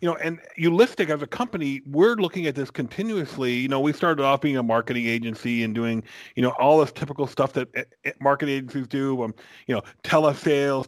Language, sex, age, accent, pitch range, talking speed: English, male, 40-59, American, 120-155 Hz, 205 wpm